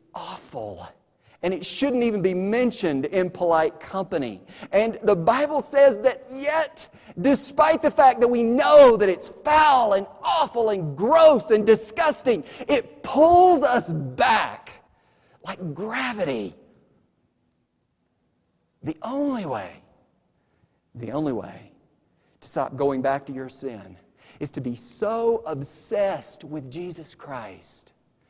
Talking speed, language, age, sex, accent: 125 wpm, English, 40-59, male, American